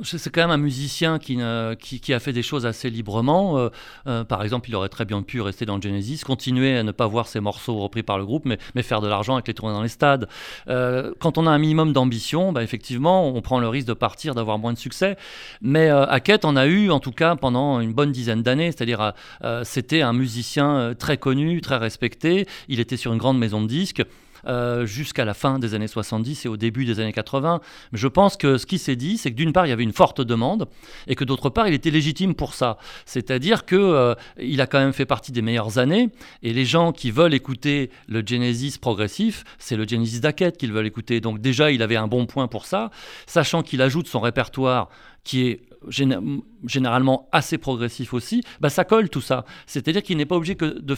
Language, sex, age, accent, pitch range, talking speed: French, male, 40-59, French, 120-155 Hz, 240 wpm